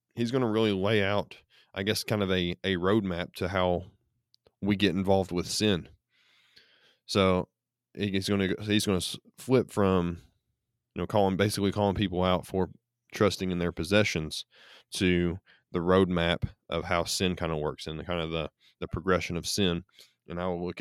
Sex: male